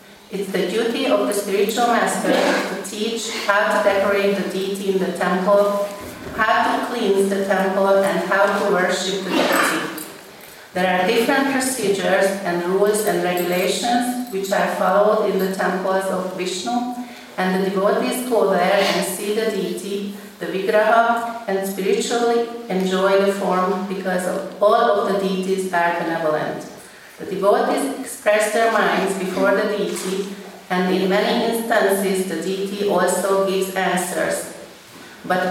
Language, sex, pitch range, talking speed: Hungarian, female, 185-210 Hz, 145 wpm